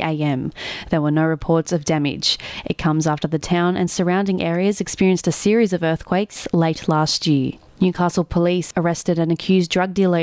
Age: 20-39